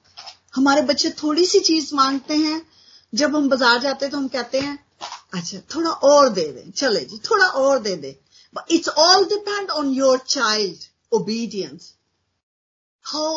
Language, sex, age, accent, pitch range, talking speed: Hindi, female, 50-69, native, 215-315 Hz, 155 wpm